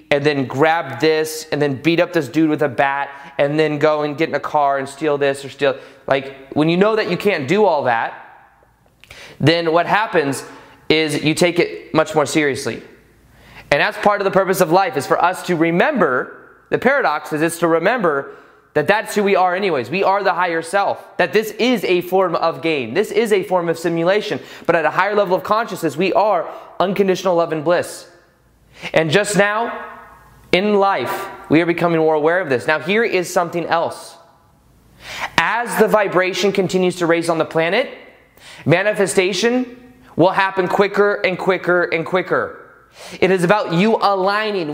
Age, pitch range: 20-39, 165-205 Hz